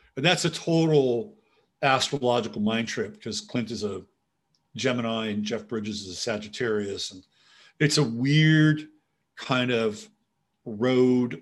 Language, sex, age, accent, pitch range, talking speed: English, male, 50-69, American, 115-150 Hz, 130 wpm